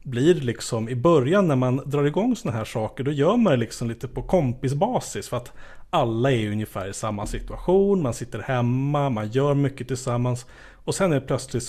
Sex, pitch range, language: male, 115-150 Hz, Swedish